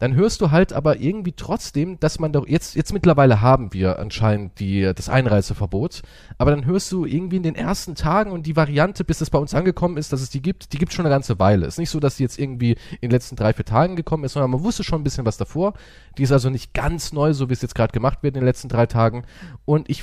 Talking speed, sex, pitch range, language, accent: 275 wpm, male, 120-175 Hz, German, German